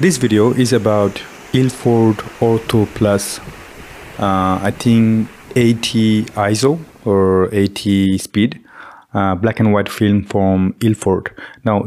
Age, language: 30-49, English